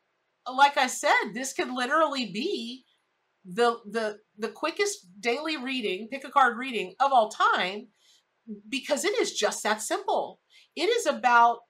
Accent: American